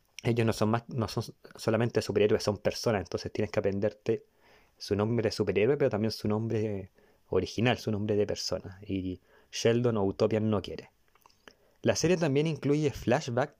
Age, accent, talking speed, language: 20-39, Argentinian, 170 wpm, Spanish